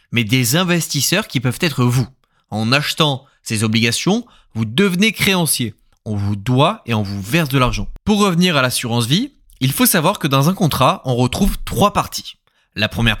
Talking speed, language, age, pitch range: 185 wpm, French, 20-39, 115-170 Hz